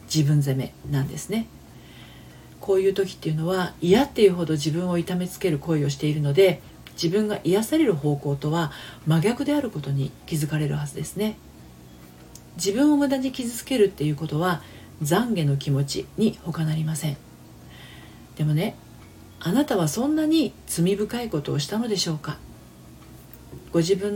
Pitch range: 140-200 Hz